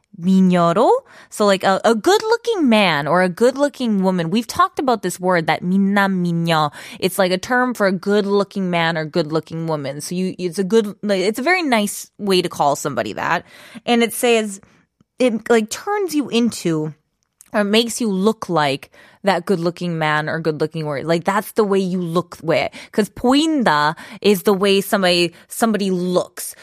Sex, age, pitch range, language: female, 20-39, 175-230 Hz, Korean